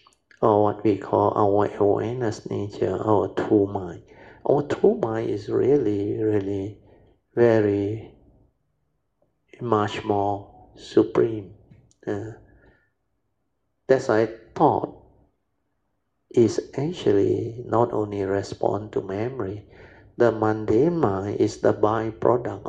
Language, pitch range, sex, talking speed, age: English, 100-115 Hz, male, 100 wpm, 60-79